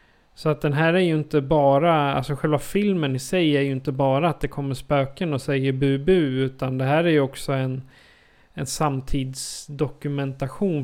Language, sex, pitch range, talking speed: Swedish, male, 135-160 Hz, 185 wpm